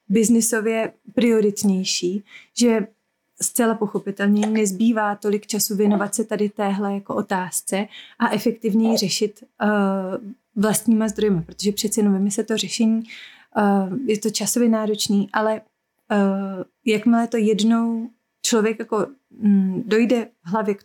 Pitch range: 200-225 Hz